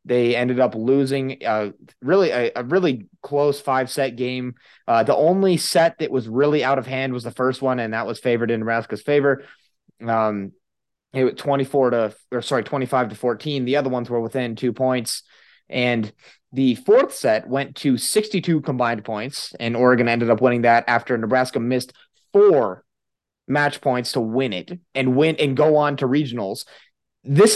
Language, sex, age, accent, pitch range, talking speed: English, male, 30-49, American, 120-155 Hz, 180 wpm